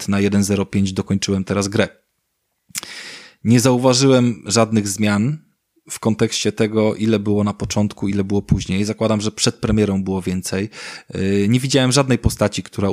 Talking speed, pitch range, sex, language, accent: 140 wpm, 95-115 Hz, male, Polish, native